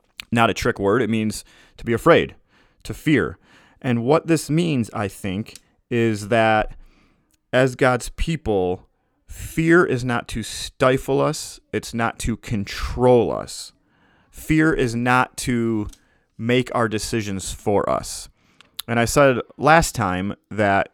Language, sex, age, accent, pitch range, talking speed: English, male, 30-49, American, 105-125 Hz, 140 wpm